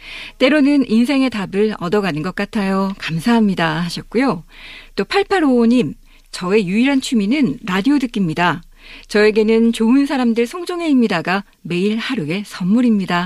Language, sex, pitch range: Korean, female, 185-255 Hz